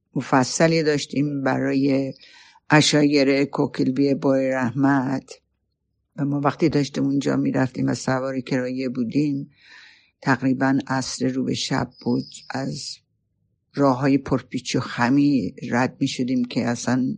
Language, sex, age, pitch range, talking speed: Persian, female, 60-79, 130-140 Hz, 120 wpm